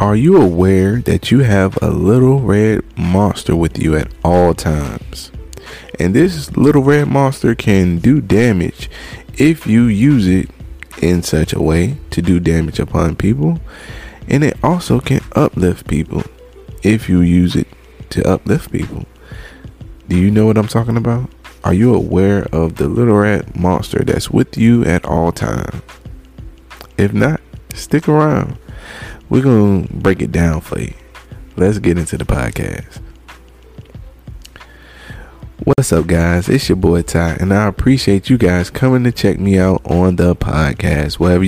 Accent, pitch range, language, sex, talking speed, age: American, 85-115 Hz, English, male, 155 wpm, 20-39